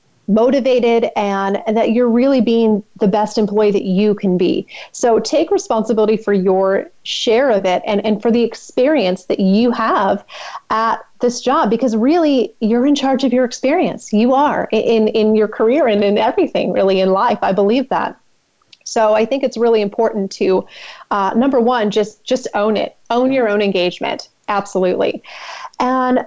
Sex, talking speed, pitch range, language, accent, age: female, 175 wpm, 195-245 Hz, English, American, 30-49